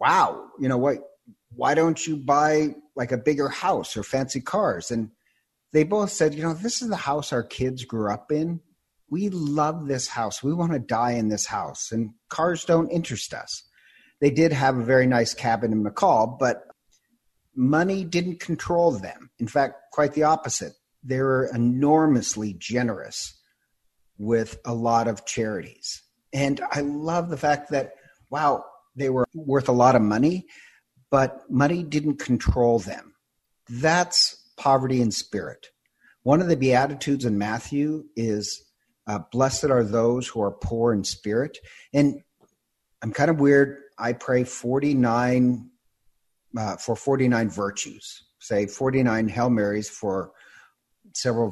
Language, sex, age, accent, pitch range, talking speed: English, male, 50-69, American, 115-150 Hz, 150 wpm